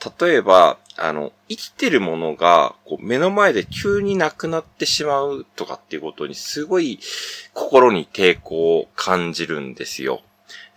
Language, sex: Japanese, male